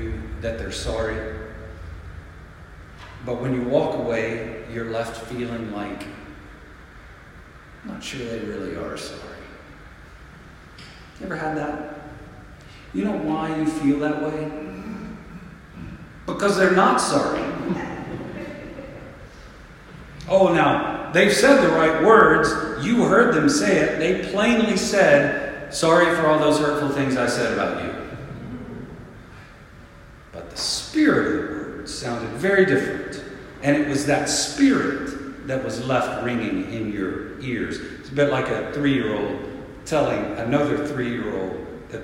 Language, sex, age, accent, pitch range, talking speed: English, male, 50-69, American, 110-150 Hz, 135 wpm